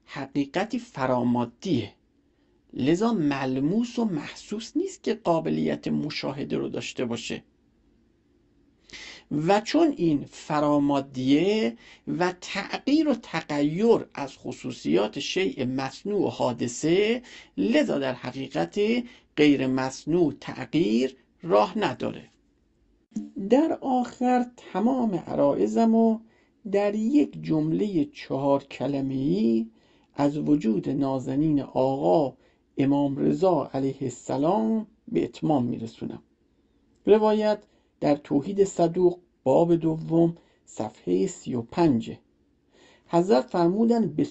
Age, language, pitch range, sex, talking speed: 50-69, Persian, 140-230 Hz, male, 90 wpm